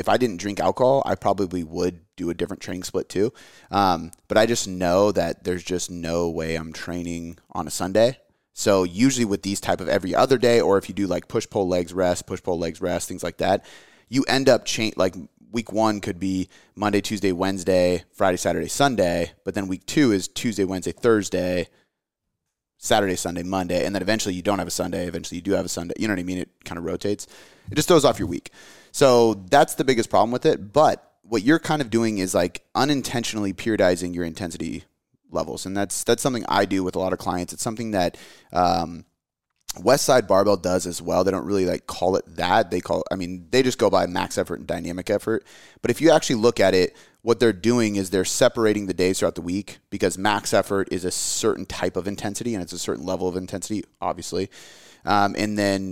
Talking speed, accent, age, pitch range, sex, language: 225 wpm, American, 30-49, 90-110 Hz, male, English